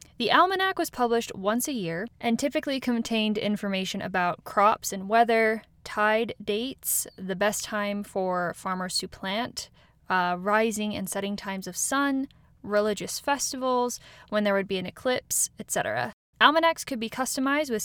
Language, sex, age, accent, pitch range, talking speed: English, female, 10-29, American, 195-240 Hz, 150 wpm